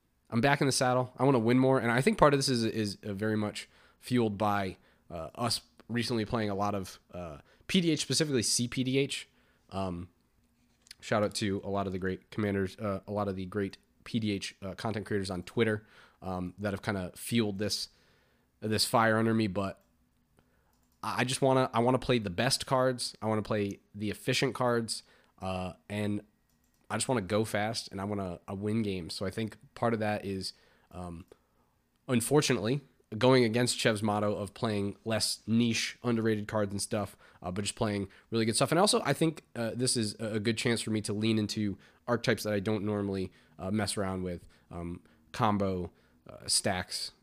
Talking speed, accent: 200 wpm, American